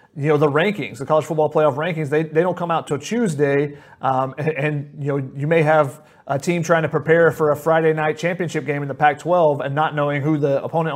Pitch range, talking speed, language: 150-185 Hz, 240 wpm, English